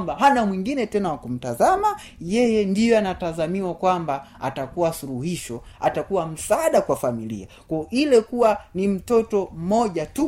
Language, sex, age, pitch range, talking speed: Swahili, male, 30-49, 140-195 Hz, 140 wpm